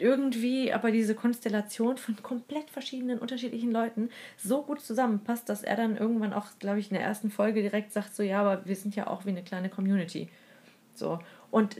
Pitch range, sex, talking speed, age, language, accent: 200-235 Hz, female, 195 wpm, 30-49, German, German